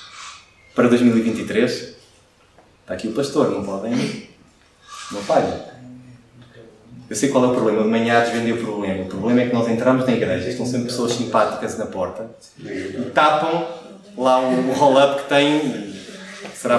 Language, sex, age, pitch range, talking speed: Portuguese, male, 20-39, 125-175 Hz, 155 wpm